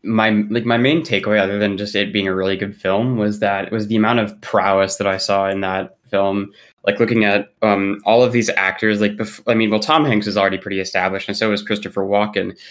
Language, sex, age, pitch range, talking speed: English, male, 20-39, 95-110 Hz, 245 wpm